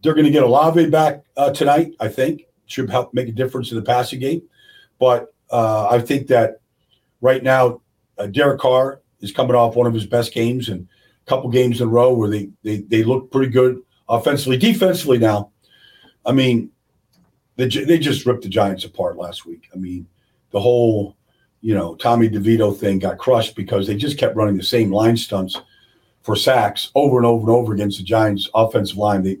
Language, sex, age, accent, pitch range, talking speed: English, male, 50-69, American, 105-130 Hz, 200 wpm